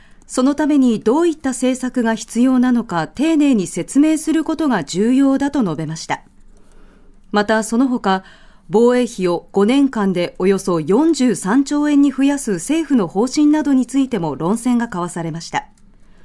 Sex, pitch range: female, 195-275 Hz